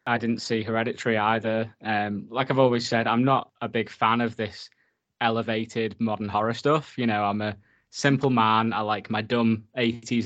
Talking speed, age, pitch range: 185 wpm, 10-29, 110-125 Hz